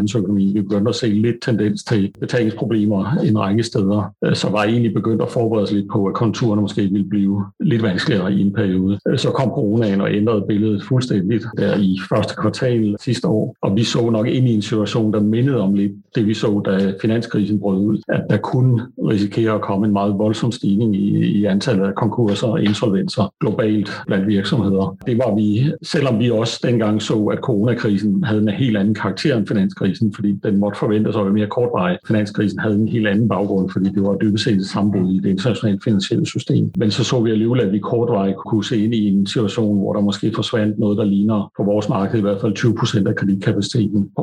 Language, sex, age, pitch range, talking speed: Danish, male, 60-79, 100-115 Hz, 215 wpm